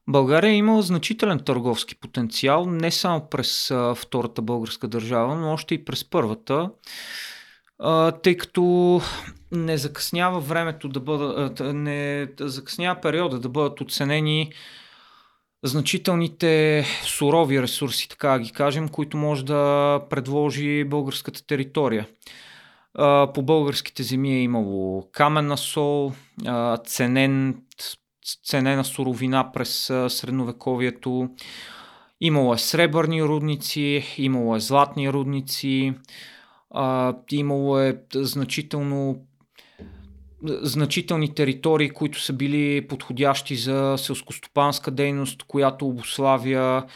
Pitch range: 130-150 Hz